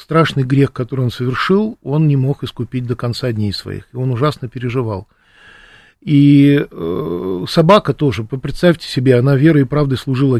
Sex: male